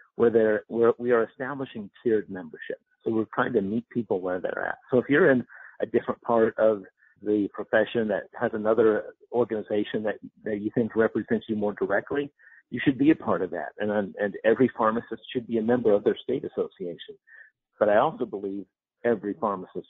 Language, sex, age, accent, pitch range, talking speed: English, male, 50-69, American, 105-130 Hz, 195 wpm